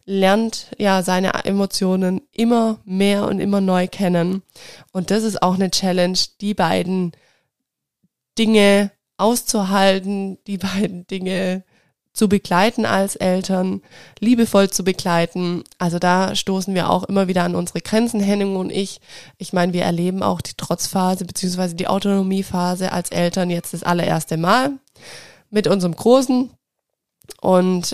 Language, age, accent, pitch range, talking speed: German, 20-39, German, 180-200 Hz, 135 wpm